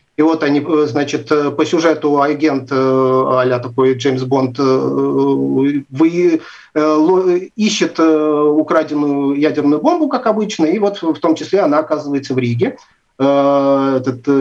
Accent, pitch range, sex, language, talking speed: native, 135-165 Hz, male, Russian, 110 wpm